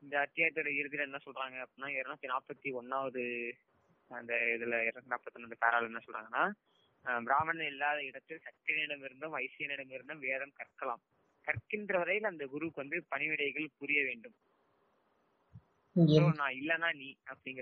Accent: native